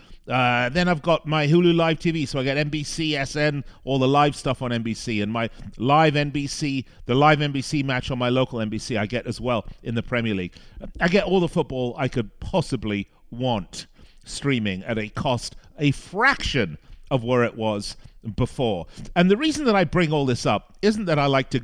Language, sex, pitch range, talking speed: English, male, 105-145 Hz, 200 wpm